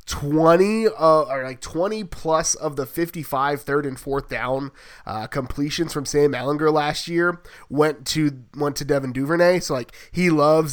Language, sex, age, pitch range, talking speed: English, male, 20-39, 145-175 Hz, 170 wpm